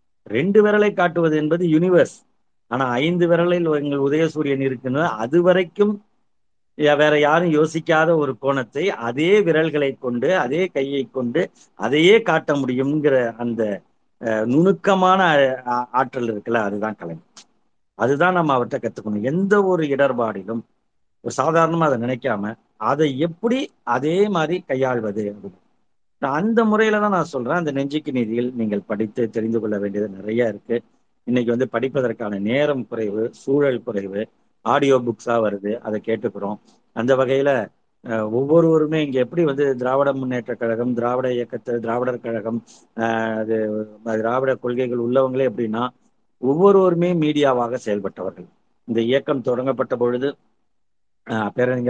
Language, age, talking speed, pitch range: Tamil, 50-69, 120 wpm, 115-155 Hz